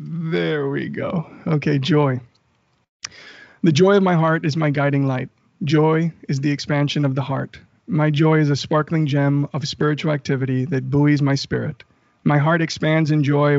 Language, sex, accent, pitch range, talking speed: English, male, American, 140-155 Hz, 170 wpm